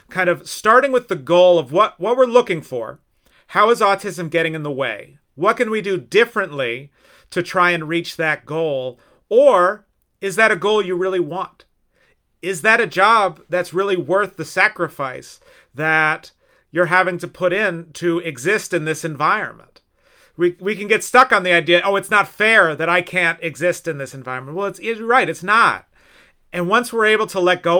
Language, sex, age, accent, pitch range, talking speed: English, male, 40-59, American, 160-205 Hz, 195 wpm